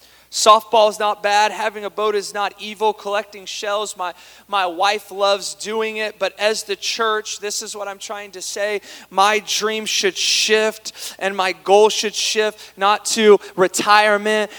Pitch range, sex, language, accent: 215-320 Hz, male, English, American